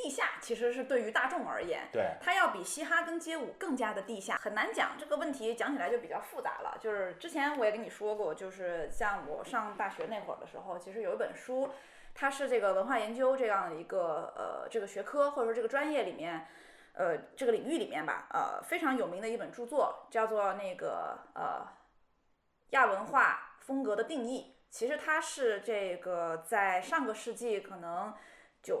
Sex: female